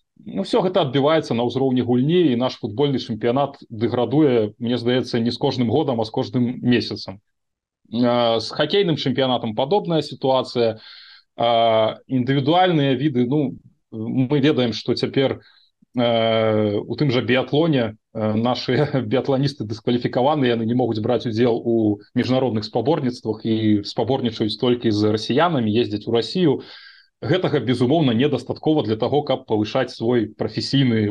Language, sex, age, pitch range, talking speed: Russian, male, 20-39, 115-140 Hz, 130 wpm